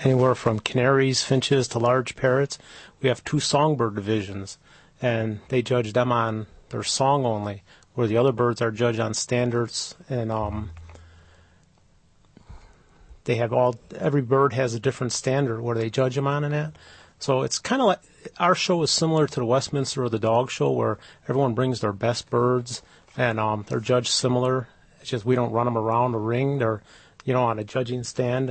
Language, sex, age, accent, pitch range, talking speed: English, male, 40-59, American, 110-130 Hz, 185 wpm